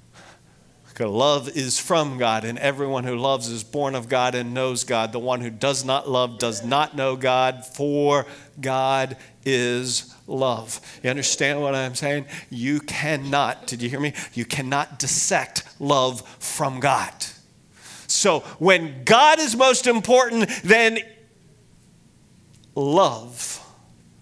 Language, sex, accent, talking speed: English, male, American, 135 wpm